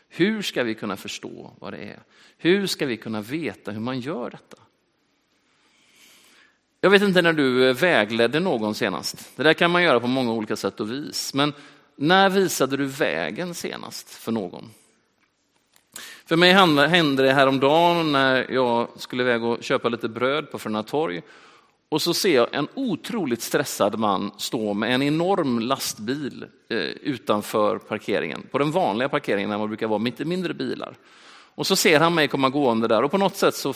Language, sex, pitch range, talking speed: Swedish, male, 115-165 Hz, 180 wpm